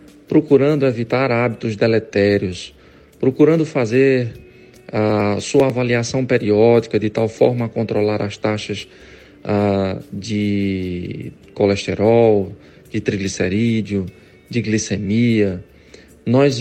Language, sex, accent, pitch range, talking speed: Portuguese, male, Brazilian, 105-130 Hz, 90 wpm